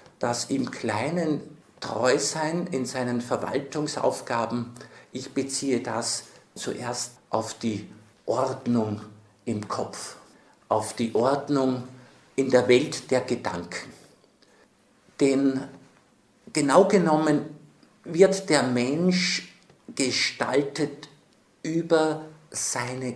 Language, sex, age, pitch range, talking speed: German, male, 50-69, 120-150 Hz, 90 wpm